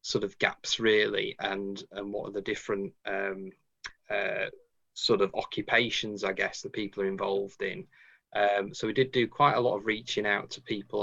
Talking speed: 190 wpm